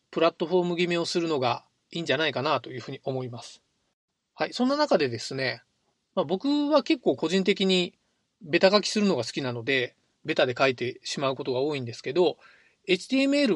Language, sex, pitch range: Japanese, male, 140-235 Hz